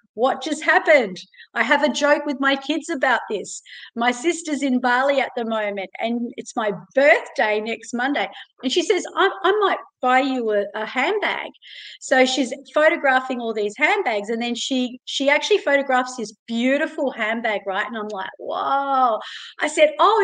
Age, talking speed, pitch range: 30-49, 175 wpm, 220-300 Hz